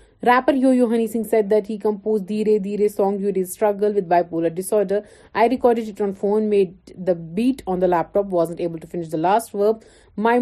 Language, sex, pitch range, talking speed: Urdu, female, 170-220 Hz, 205 wpm